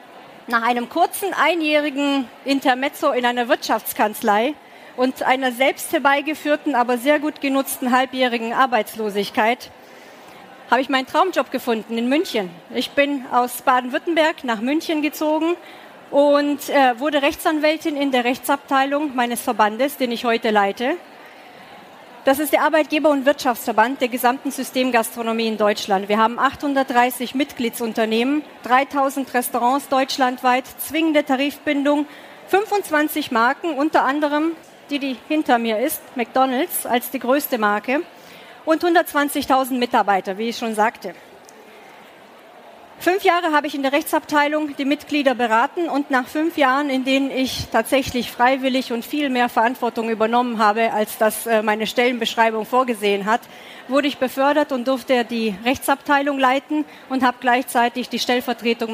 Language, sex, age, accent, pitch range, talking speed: German, female, 40-59, German, 235-290 Hz, 130 wpm